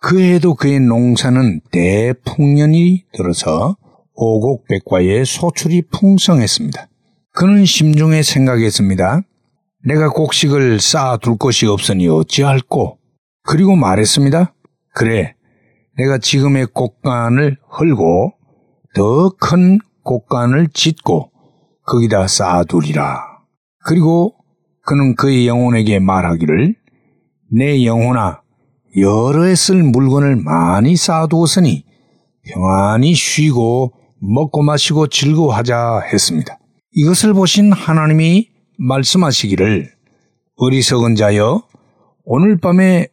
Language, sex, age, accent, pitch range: Korean, male, 60-79, native, 115-160 Hz